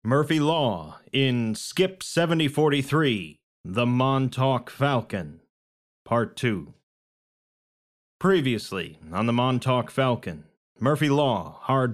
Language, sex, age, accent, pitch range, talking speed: English, male, 30-49, American, 110-140 Hz, 90 wpm